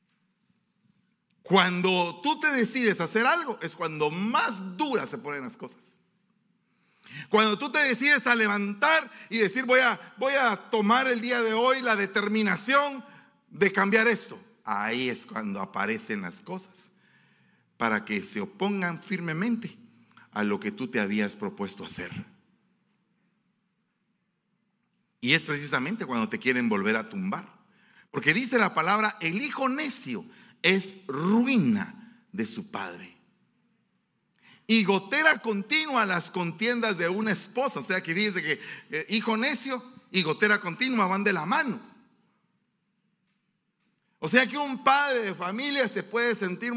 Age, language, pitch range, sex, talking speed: 40-59, Spanish, 190-235 Hz, male, 140 wpm